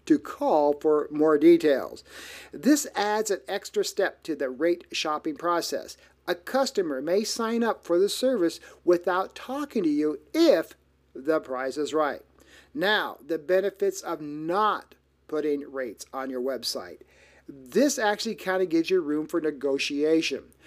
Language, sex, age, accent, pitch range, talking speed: English, male, 50-69, American, 155-255 Hz, 150 wpm